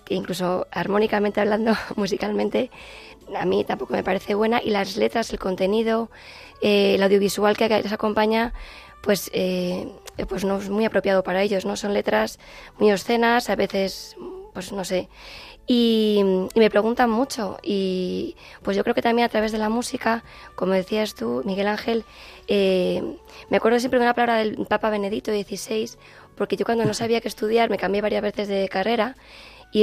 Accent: Spanish